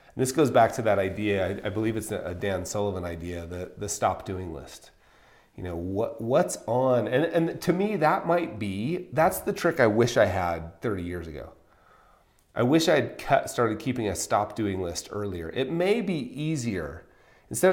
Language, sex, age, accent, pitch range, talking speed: English, male, 30-49, American, 95-130 Hz, 195 wpm